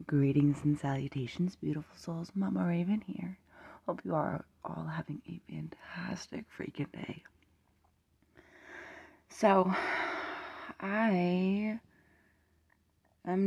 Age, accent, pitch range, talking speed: 30-49, American, 105-145 Hz, 90 wpm